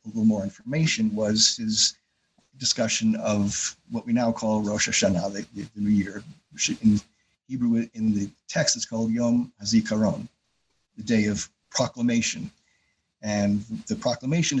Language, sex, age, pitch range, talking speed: English, male, 50-69, 110-145 Hz, 145 wpm